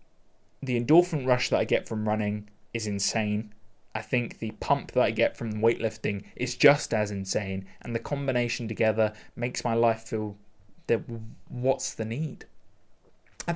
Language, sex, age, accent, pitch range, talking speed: English, male, 20-39, British, 110-140 Hz, 160 wpm